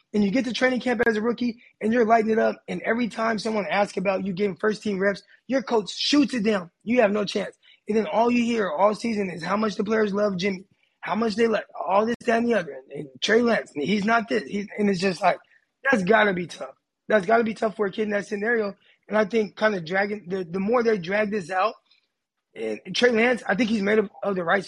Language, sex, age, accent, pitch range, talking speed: English, male, 20-39, American, 190-230 Hz, 265 wpm